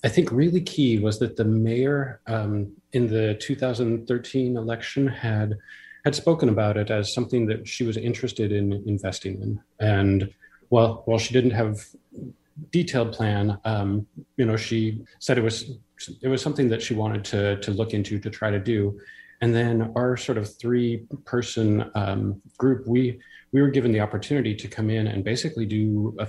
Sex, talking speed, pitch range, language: male, 180 wpm, 100-115 Hz, English